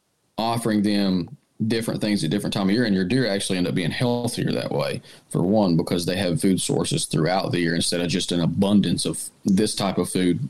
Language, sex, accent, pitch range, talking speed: English, male, American, 85-105 Hz, 225 wpm